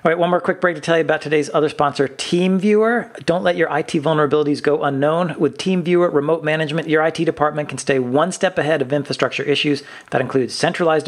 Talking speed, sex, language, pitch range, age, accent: 210 wpm, male, English, 130-160 Hz, 40-59, American